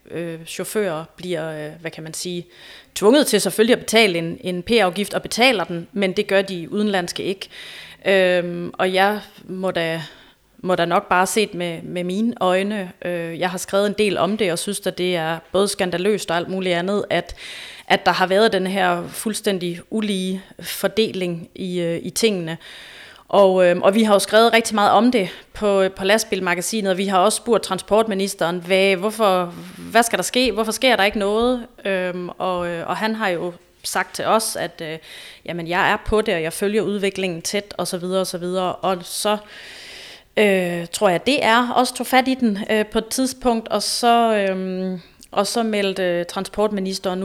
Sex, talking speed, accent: female, 170 wpm, native